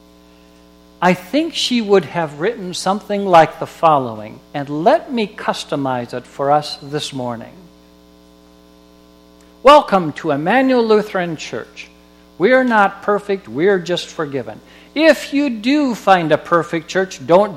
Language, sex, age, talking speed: English, male, 60-79, 130 wpm